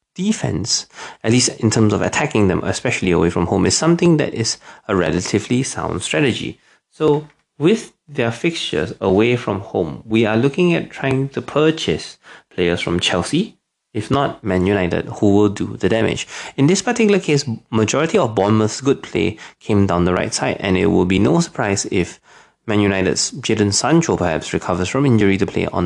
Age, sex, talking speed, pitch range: 20-39, male, 180 wpm, 95-135 Hz